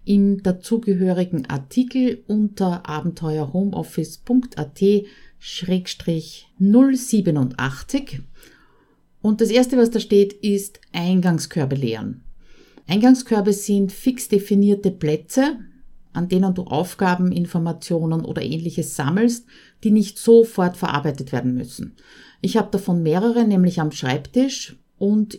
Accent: Austrian